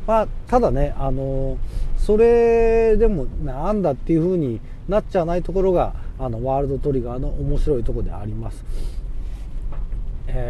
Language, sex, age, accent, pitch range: Japanese, male, 40-59, native, 120-175 Hz